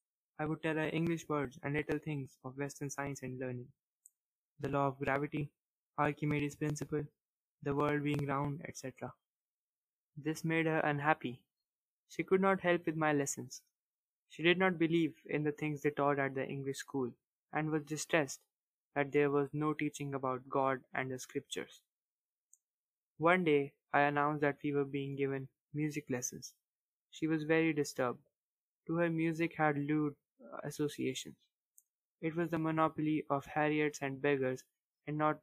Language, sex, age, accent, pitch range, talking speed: English, male, 20-39, Indian, 140-155 Hz, 160 wpm